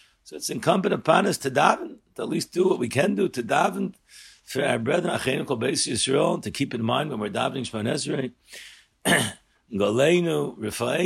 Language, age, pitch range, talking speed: English, 60-79, 125-160 Hz, 155 wpm